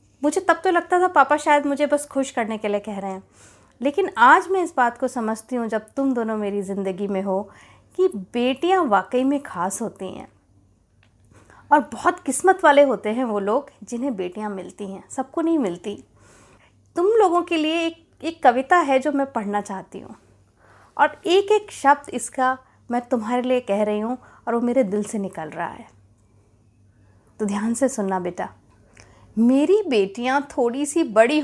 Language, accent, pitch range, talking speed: Hindi, native, 190-295 Hz, 180 wpm